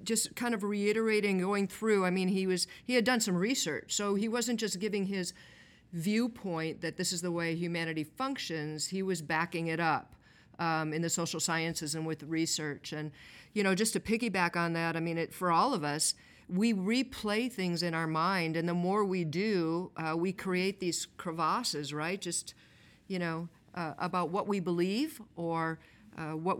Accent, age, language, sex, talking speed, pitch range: American, 50-69, English, female, 190 wpm, 165-205 Hz